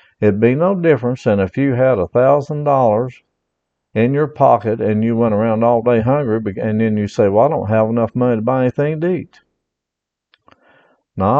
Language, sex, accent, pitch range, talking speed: English, male, American, 105-130 Hz, 185 wpm